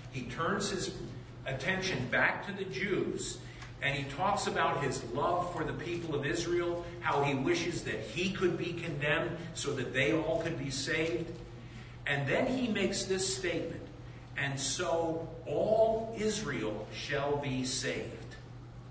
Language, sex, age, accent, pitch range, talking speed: Italian, male, 50-69, American, 125-170 Hz, 150 wpm